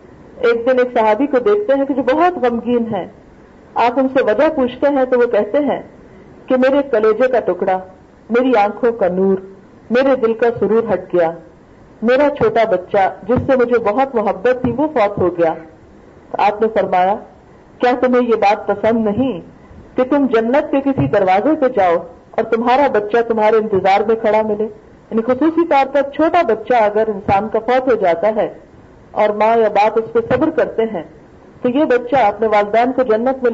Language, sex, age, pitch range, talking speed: Urdu, female, 50-69, 215-275 Hz, 190 wpm